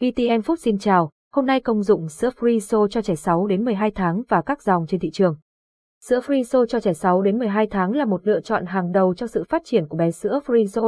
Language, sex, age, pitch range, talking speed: Vietnamese, female, 20-39, 185-240 Hz, 245 wpm